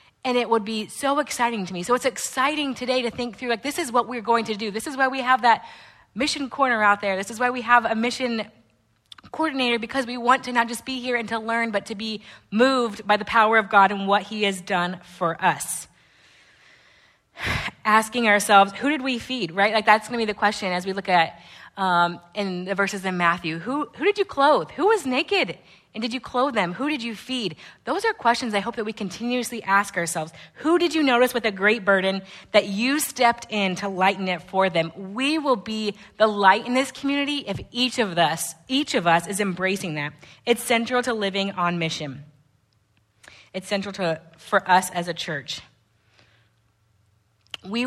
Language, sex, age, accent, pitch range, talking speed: English, female, 30-49, American, 180-235 Hz, 210 wpm